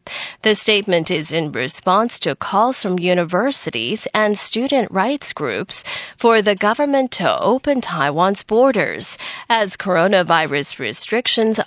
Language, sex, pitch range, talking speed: English, female, 180-245 Hz, 120 wpm